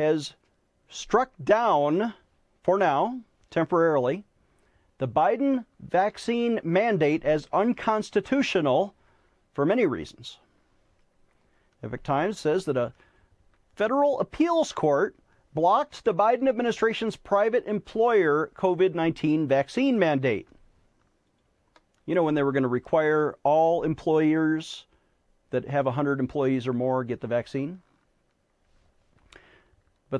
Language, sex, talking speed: English, male, 100 wpm